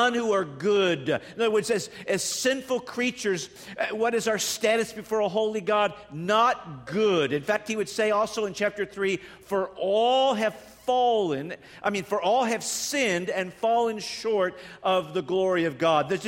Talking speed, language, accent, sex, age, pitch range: 180 wpm, English, American, male, 50-69, 170-225 Hz